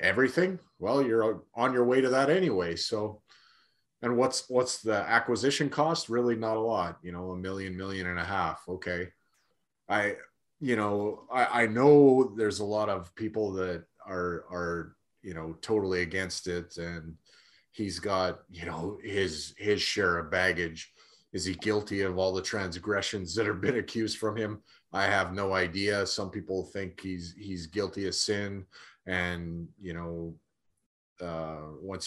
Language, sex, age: English, male, 30-49